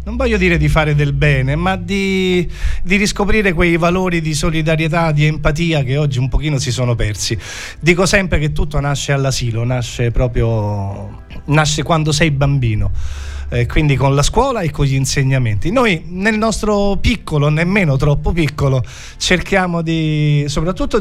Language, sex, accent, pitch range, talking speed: Italian, male, native, 125-165 Hz, 155 wpm